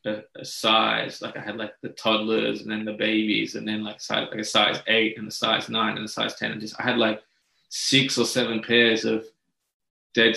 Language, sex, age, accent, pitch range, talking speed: English, male, 20-39, Australian, 110-115 Hz, 230 wpm